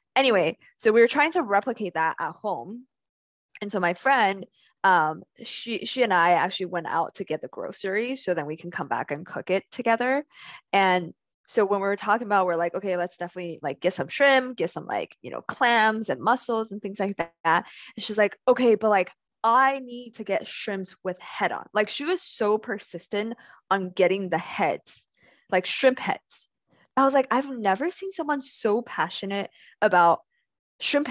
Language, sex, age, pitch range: Chinese, female, 10-29, 195-270 Hz